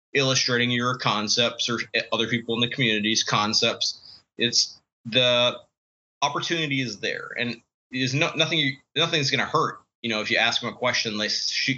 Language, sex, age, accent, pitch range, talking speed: English, male, 20-39, American, 110-130 Hz, 160 wpm